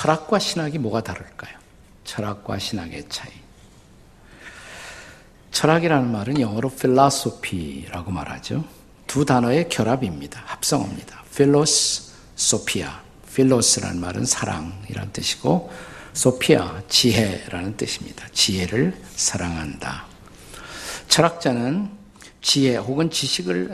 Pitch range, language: 100-140 Hz, Korean